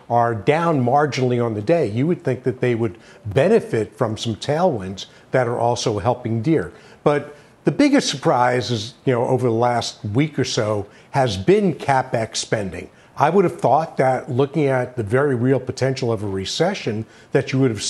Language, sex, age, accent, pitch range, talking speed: English, male, 50-69, American, 120-155 Hz, 190 wpm